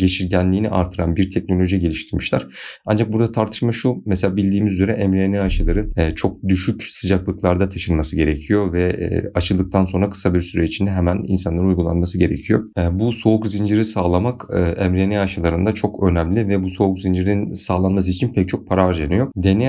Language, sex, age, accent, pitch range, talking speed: Turkish, male, 40-59, native, 90-110 Hz, 150 wpm